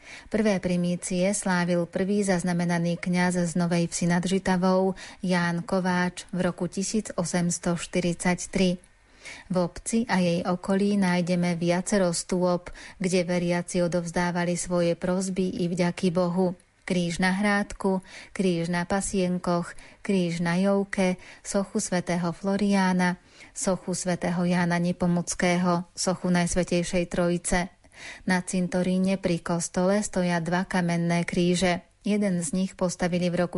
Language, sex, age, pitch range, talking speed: Slovak, female, 30-49, 175-185 Hz, 115 wpm